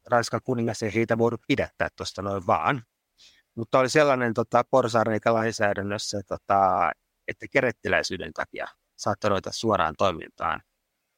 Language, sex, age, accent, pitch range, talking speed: Finnish, male, 30-49, native, 105-125 Hz, 120 wpm